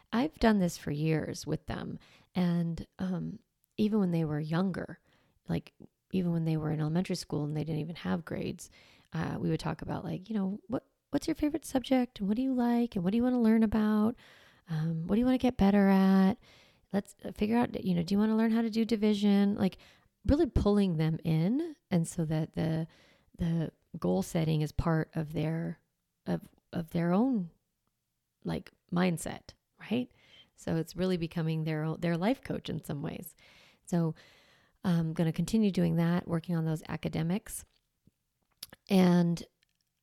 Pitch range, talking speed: 160-215 Hz, 185 wpm